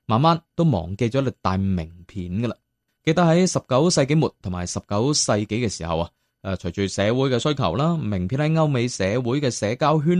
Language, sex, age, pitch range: Chinese, male, 20-39, 100-150 Hz